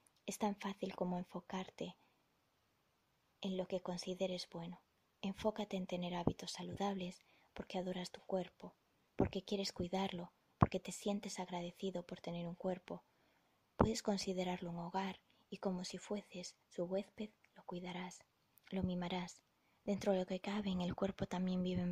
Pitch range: 175-195 Hz